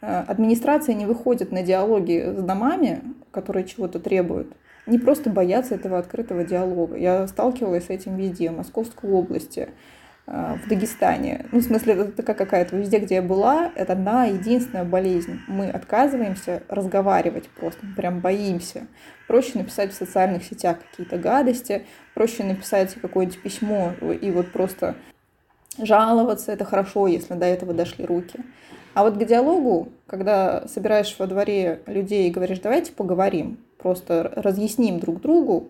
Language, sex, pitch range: Russian, female, 185-235 Hz